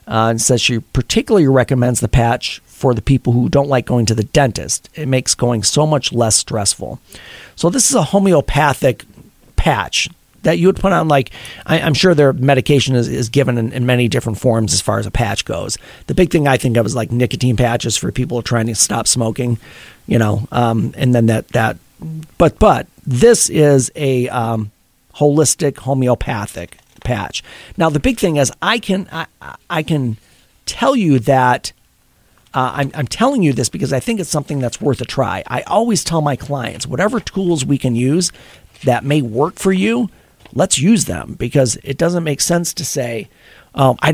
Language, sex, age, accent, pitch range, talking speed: English, male, 40-59, American, 115-150 Hz, 195 wpm